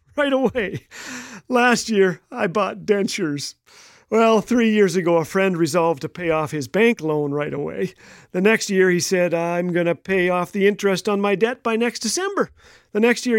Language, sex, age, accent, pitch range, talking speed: English, male, 40-59, American, 175-250 Hz, 195 wpm